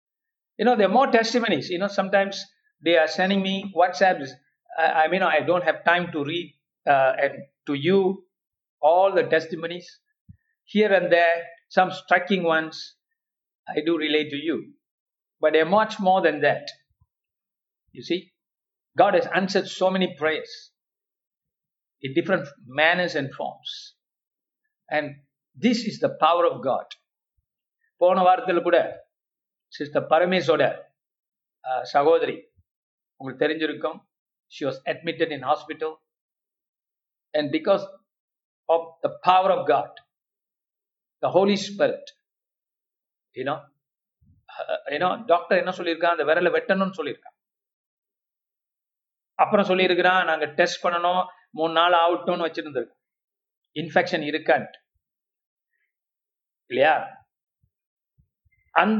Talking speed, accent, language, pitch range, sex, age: 120 wpm, native, Tamil, 160-220 Hz, male, 60-79